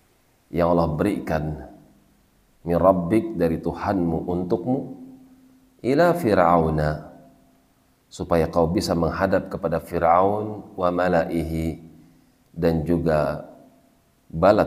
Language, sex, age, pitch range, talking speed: Indonesian, male, 40-59, 80-100 Hz, 80 wpm